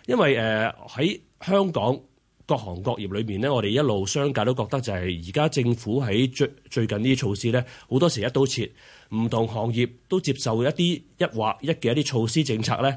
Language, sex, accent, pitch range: Chinese, male, native, 100-135 Hz